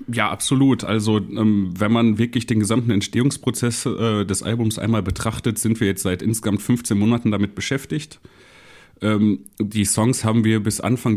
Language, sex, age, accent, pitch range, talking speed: German, male, 30-49, German, 100-120 Hz, 165 wpm